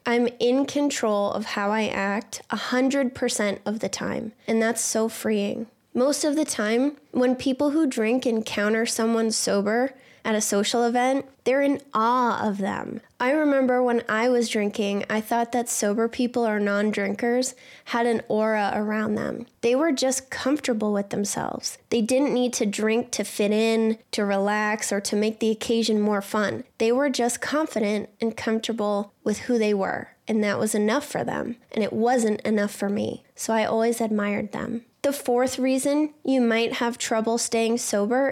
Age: 20-39